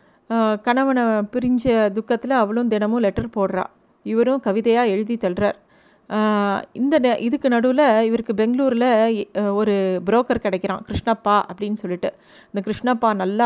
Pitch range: 210-250 Hz